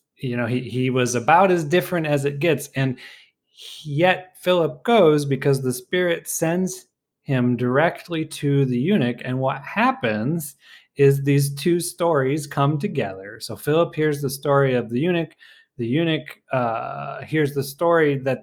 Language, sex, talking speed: English, male, 155 wpm